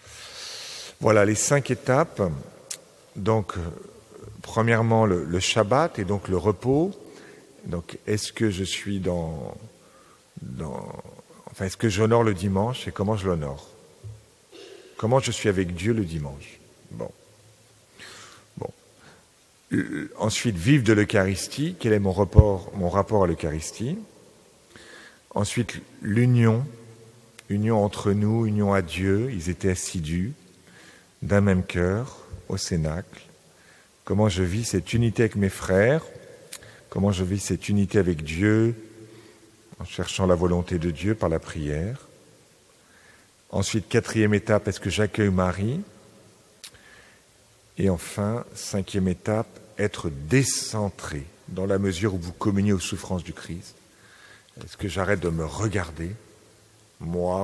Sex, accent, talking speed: male, French, 125 wpm